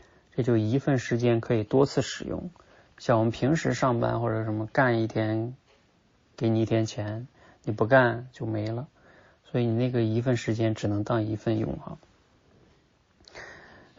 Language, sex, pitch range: Chinese, male, 110-125 Hz